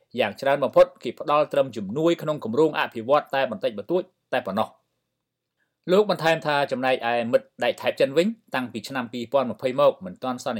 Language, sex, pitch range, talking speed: English, male, 120-160 Hz, 180 wpm